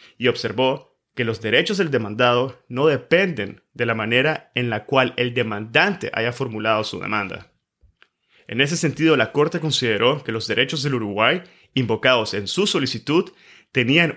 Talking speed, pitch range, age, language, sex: 155 wpm, 115-150 Hz, 30-49, Spanish, male